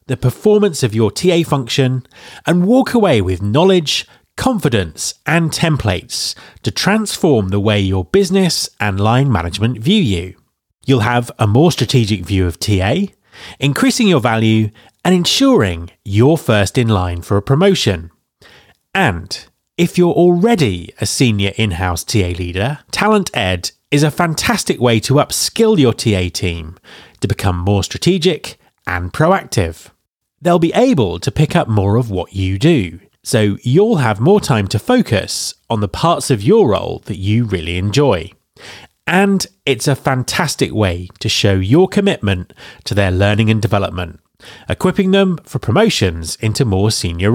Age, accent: 30-49, British